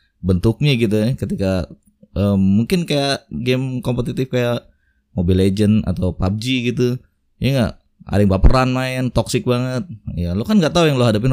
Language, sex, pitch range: Indonesian, male, 95-125 Hz